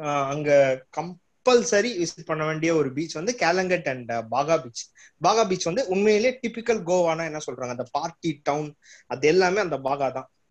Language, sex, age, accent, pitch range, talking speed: Tamil, male, 20-39, native, 150-200 Hz, 160 wpm